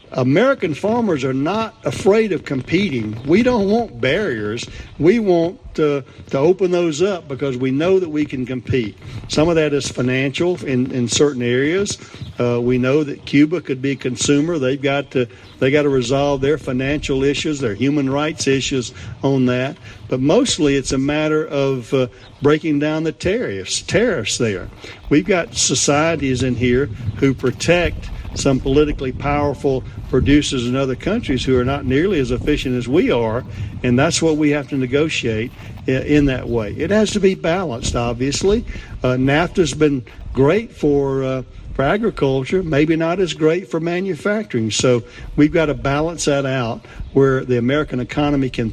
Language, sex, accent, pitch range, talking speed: English, male, American, 120-150 Hz, 170 wpm